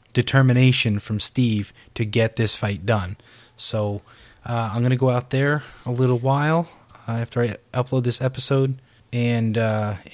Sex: male